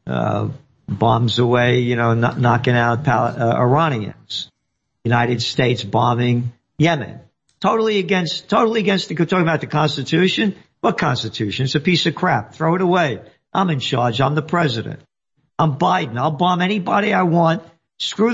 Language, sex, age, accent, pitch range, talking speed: English, male, 50-69, American, 120-165 Hz, 145 wpm